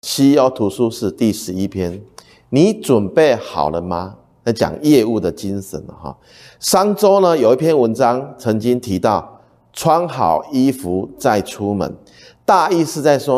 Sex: male